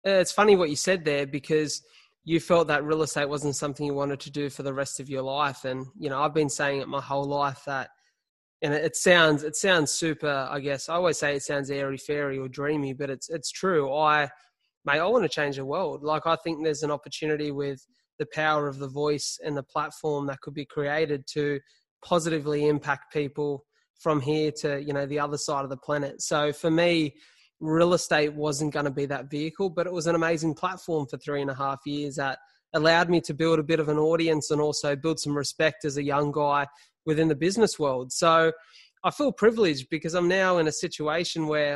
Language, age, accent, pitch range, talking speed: English, 20-39, Australian, 145-165 Hz, 225 wpm